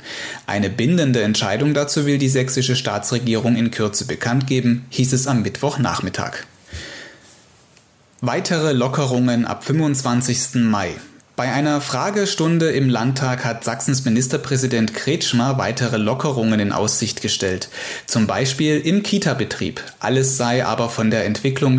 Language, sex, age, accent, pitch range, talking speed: German, male, 30-49, German, 115-140 Hz, 125 wpm